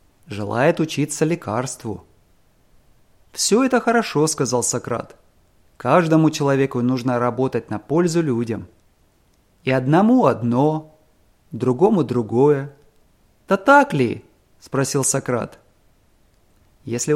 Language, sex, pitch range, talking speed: English, male, 115-160 Hz, 90 wpm